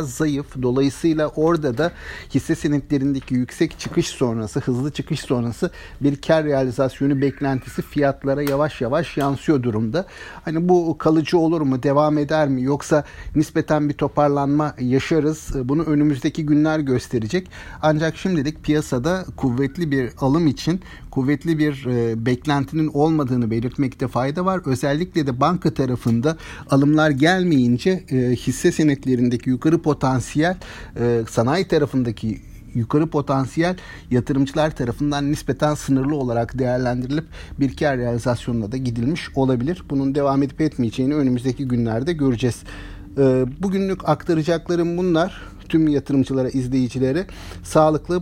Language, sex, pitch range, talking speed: Turkish, male, 130-155 Hz, 115 wpm